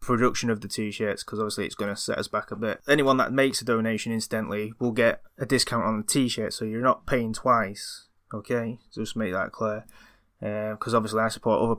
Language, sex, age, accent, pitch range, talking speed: English, male, 20-39, British, 110-125 Hz, 225 wpm